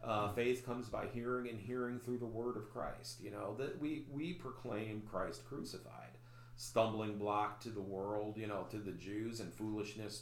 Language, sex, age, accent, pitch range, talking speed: English, male, 40-59, American, 105-120 Hz, 190 wpm